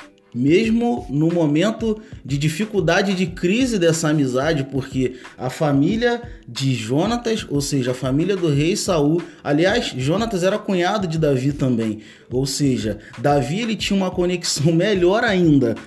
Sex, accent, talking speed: male, Brazilian, 140 wpm